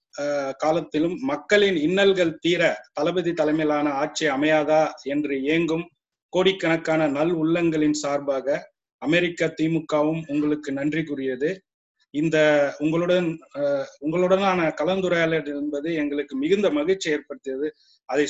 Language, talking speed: Tamil, 95 wpm